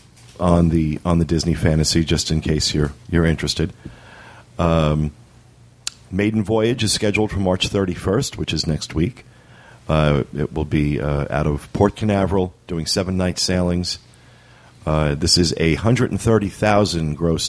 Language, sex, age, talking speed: English, male, 40-59, 160 wpm